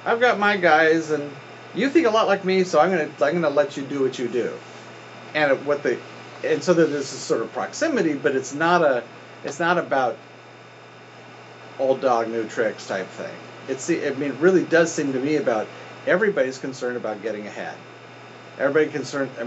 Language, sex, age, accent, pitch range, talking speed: English, male, 40-59, American, 125-155 Hz, 205 wpm